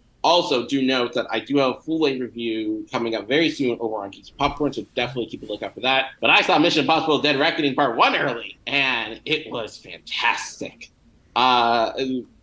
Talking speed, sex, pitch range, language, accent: 195 wpm, male, 115-140 Hz, English, American